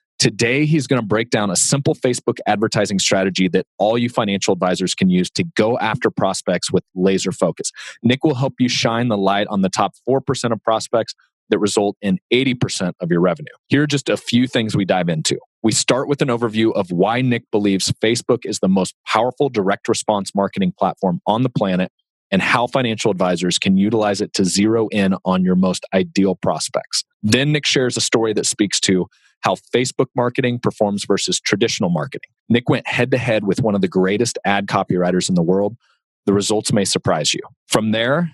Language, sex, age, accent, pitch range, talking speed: English, male, 30-49, American, 95-125 Hz, 195 wpm